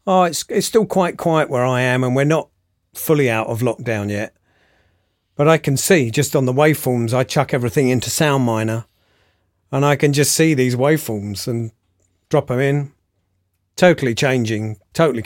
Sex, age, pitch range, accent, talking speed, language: male, 40-59, 110-140 Hz, British, 175 wpm, English